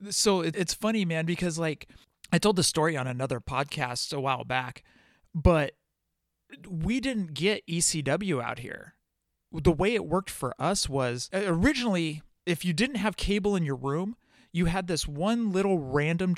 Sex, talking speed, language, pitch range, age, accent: male, 165 wpm, English, 140-185 Hz, 30-49, American